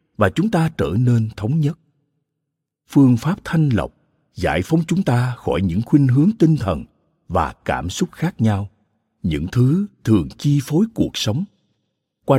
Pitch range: 100-150 Hz